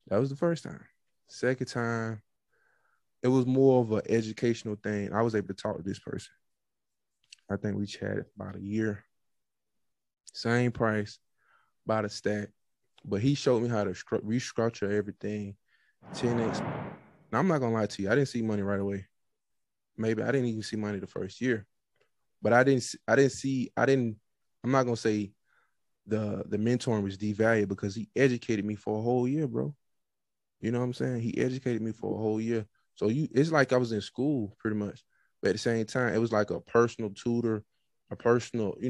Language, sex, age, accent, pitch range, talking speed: English, male, 20-39, American, 105-120 Hz, 195 wpm